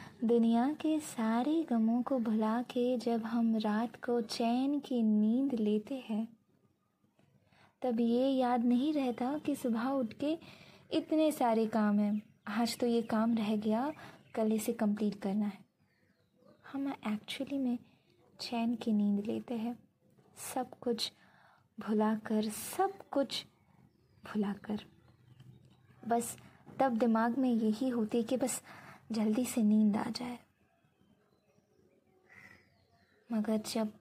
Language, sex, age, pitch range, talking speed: Hindi, female, 20-39, 215-250 Hz, 125 wpm